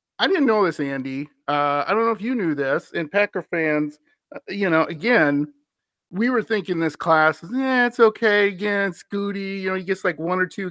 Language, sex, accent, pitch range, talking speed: English, male, American, 150-205 Hz, 215 wpm